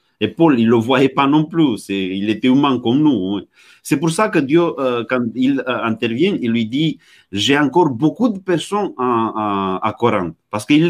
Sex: male